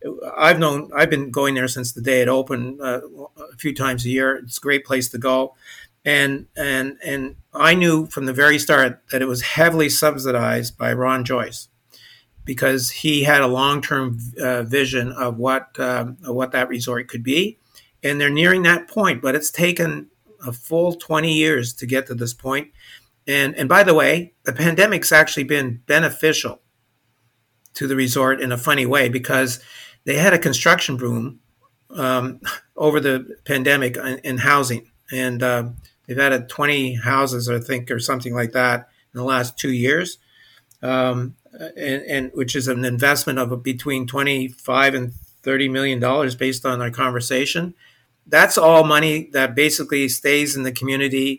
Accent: American